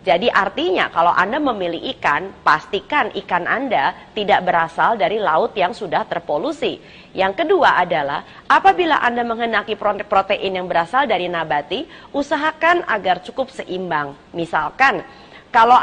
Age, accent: 30-49, native